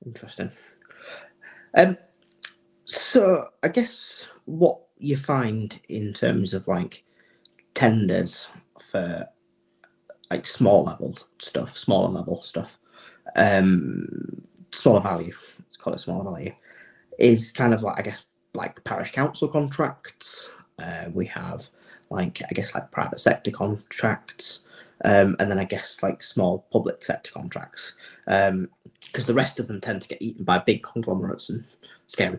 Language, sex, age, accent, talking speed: English, male, 30-49, British, 135 wpm